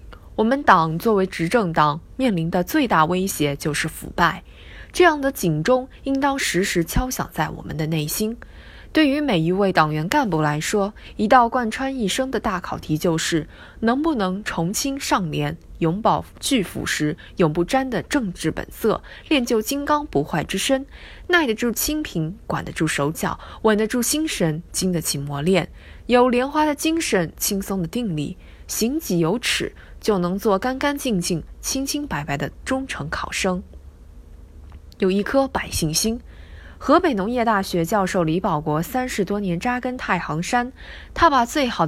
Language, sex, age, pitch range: Chinese, female, 20-39, 165-255 Hz